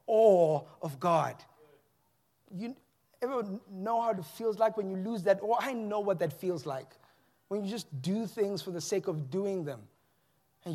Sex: male